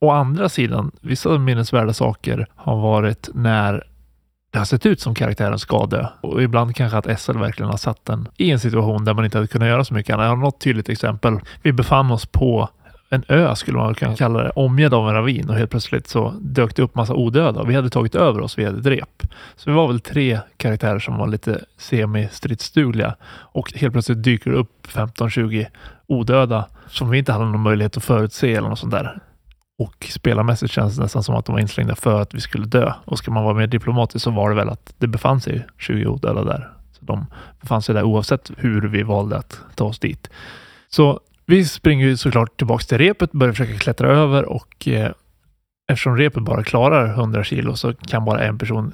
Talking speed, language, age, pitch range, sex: 215 wpm, Swedish, 30-49, 110-130 Hz, male